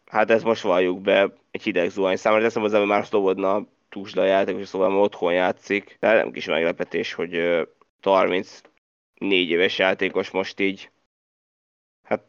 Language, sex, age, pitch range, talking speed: Hungarian, male, 20-39, 95-105 Hz, 150 wpm